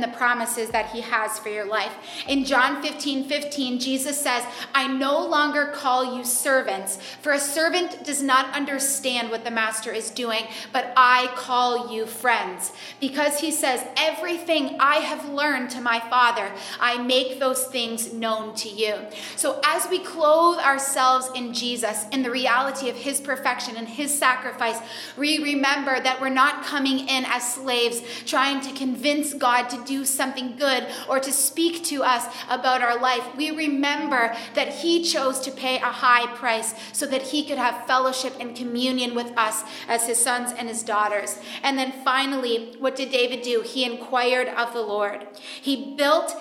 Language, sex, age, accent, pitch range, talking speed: English, female, 30-49, American, 235-275 Hz, 175 wpm